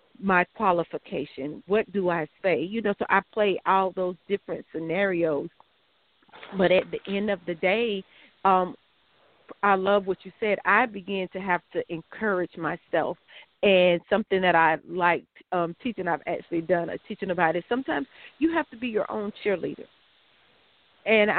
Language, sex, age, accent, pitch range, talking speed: English, female, 40-59, American, 175-220 Hz, 160 wpm